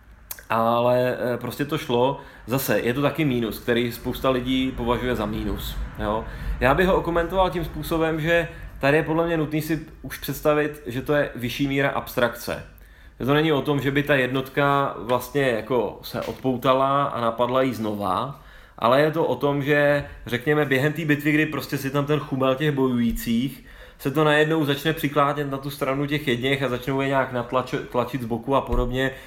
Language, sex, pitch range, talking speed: Czech, male, 120-145 Hz, 190 wpm